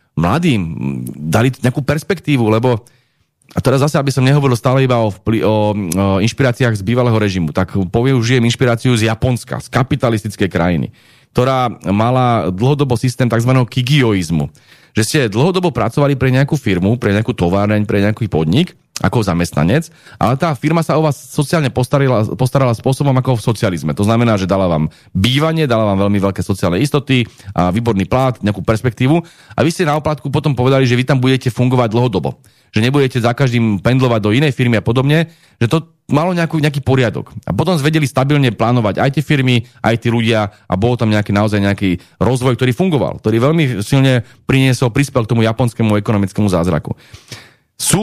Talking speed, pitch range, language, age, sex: 175 wpm, 105-135 Hz, Slovak, 30-49, male